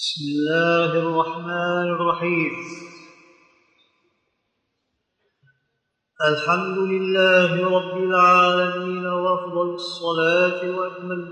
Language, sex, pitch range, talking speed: Arabic, male, 170-180 Hz, 60 wpm